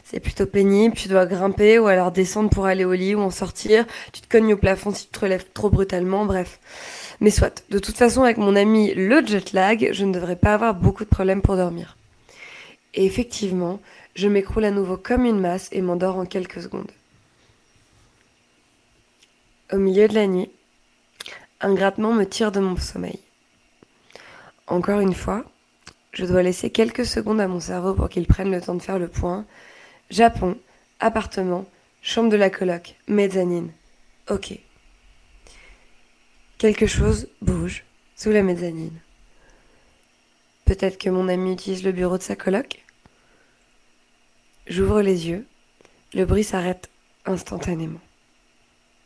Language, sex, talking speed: French, female, 155 wpm